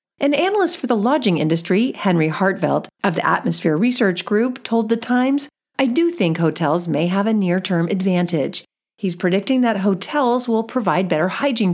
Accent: American